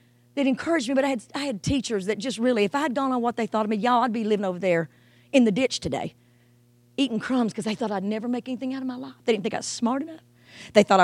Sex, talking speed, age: female, 295 wpm, 40-59